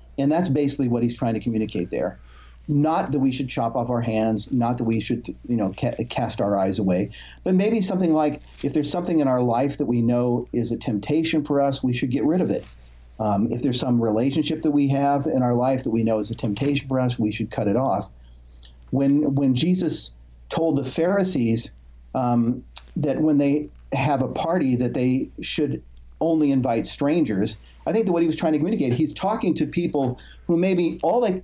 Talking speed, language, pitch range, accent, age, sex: 215 wpm, English, 110-150 Hz, American, 50-69, male